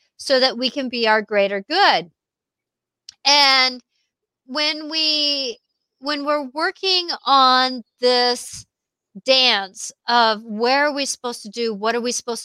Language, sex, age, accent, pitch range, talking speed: English, female, 40-59, American, 230-295 Hz, 135 wpm